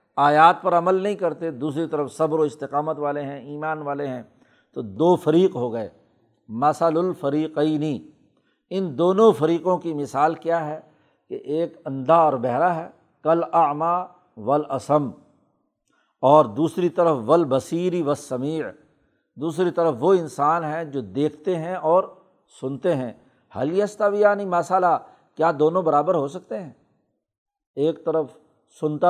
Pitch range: 145-185 Hz